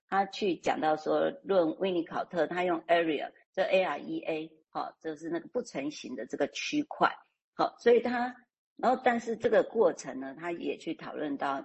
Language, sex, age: Chinese, female, 50-69